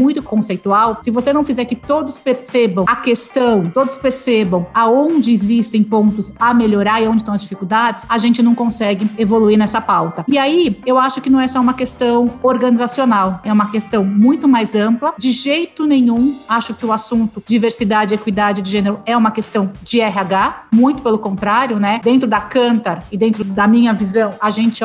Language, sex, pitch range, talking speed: Portuguese, female, 210-245 Hz, 190 wpm